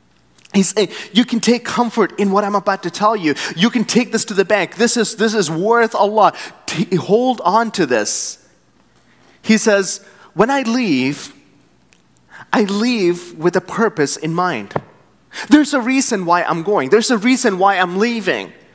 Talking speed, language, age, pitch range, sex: 175 wpm, English, 30-49, 180-235 Hz, male